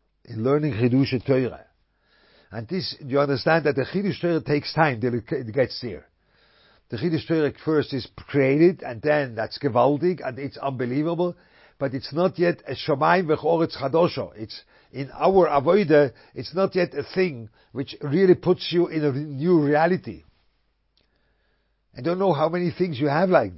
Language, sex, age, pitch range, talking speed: English, male, 50-69, 120-165 Hz, 165 wpm